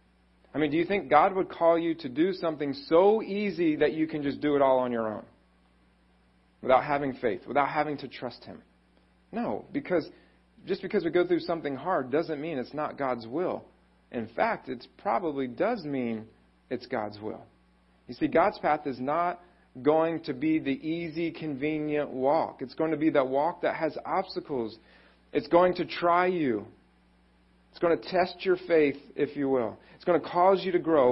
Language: English